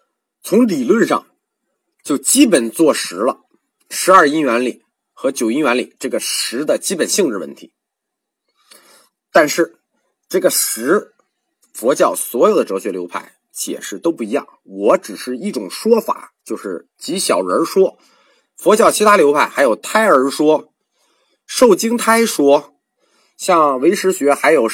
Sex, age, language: male, 30-49, Chinese